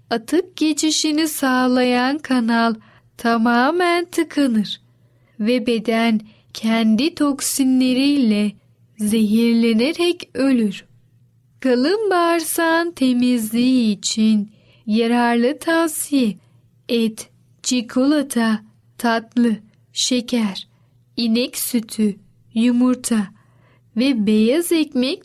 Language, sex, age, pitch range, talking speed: Turkish, female, 10-29, 215-285 Hz, 65 wpm